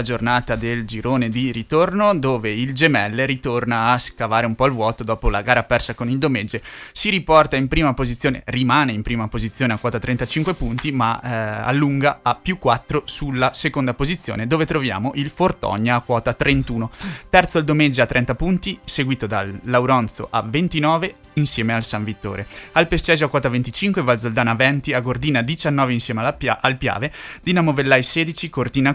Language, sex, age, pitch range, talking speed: Italian, male, 20-39, 120-145 Hz, 180 wpm